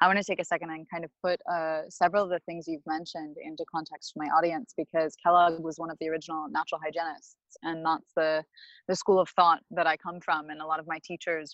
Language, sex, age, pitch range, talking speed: English, female, 20-39, 160-180 Hz, 250 wpm